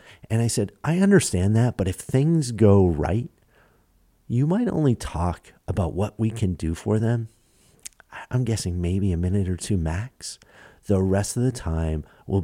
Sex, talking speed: male, 175 wpm